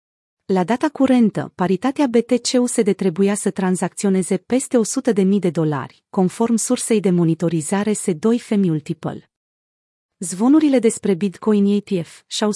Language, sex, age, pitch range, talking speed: Romanian, female, 30-49, 180-225 Hz, 120 wpm